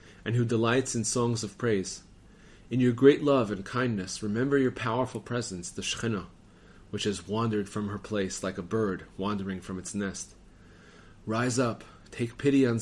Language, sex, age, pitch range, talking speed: English, male, 30-49, 100-125 Hz, 175 wpm